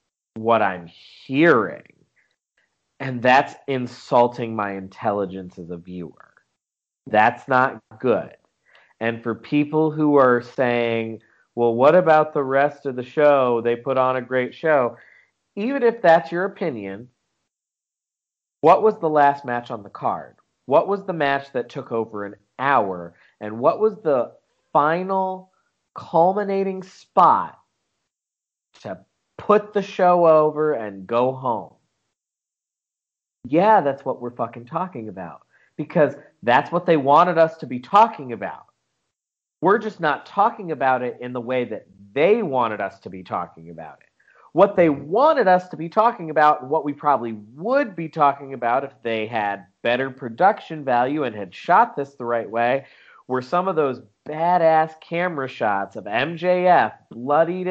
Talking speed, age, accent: 150 wpm, 40-59, American